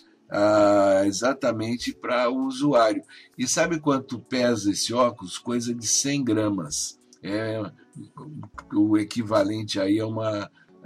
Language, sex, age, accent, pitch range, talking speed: Portuguese, male, 60-79, Brazilian, 105-130 Hz, 115 wpm